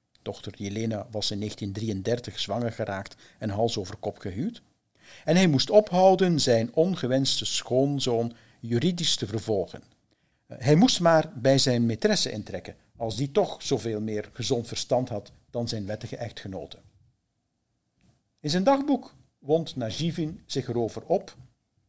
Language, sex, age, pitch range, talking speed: Dutch, male, 50-69, 110-150 Hz, 135 wpm